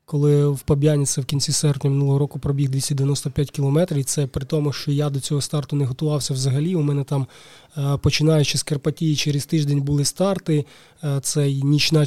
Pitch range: 145-165 Hz